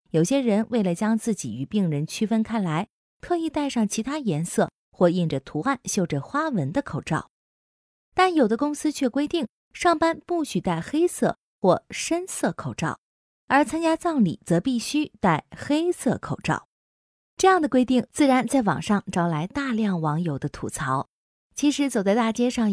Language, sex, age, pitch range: Chinese, female, 20-39, 170-275 Hz